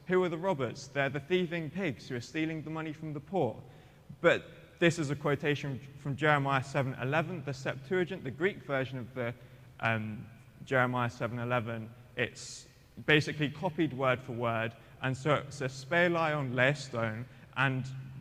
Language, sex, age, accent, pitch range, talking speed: English, male, 20-39, British, 125-155 Hz, 160 wpm